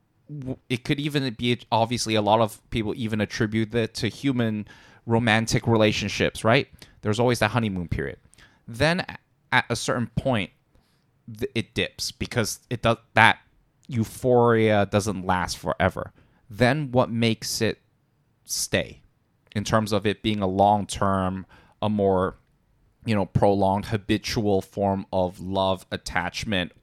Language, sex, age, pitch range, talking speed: English, male, 20-39, 100-120 Hz, 135 wpm